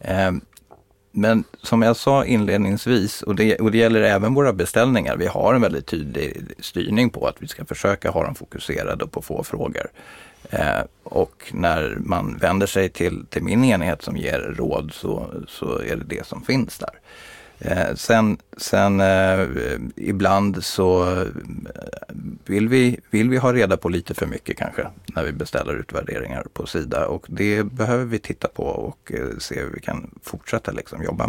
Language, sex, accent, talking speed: Swedish, male, native, 165 wpm